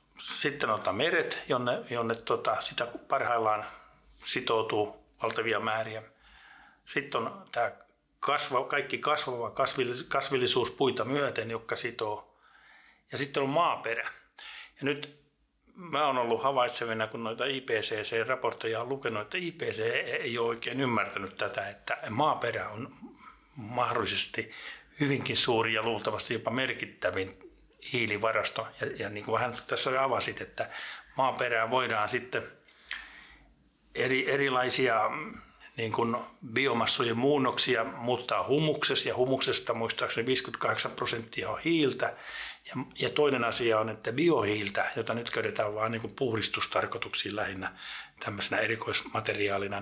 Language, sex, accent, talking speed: Finnish, male, native, 115 wpm